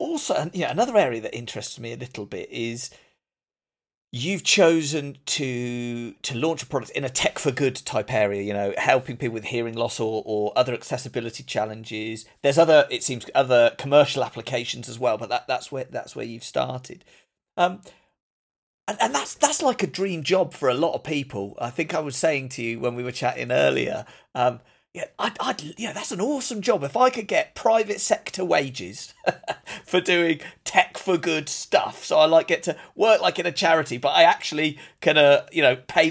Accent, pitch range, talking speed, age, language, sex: British, 125-175 Hz, 205 wpm, 40-59, English, male